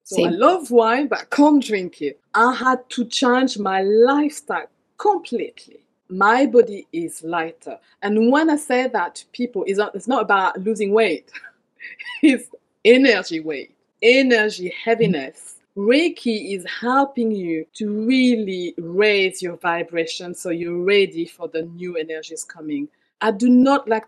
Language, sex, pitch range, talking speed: English, female, 180-255 Hz, 145 wpm